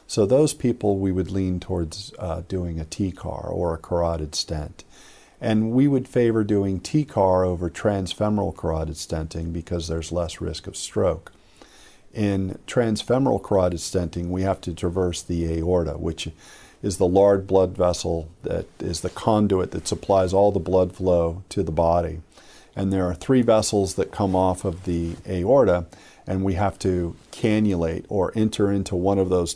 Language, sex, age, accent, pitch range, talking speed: English, male, 50-69, American, 85-100 Hz, 165 wpm